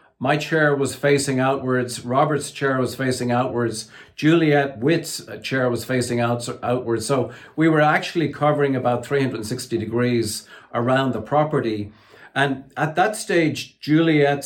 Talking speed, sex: 135 wpm, male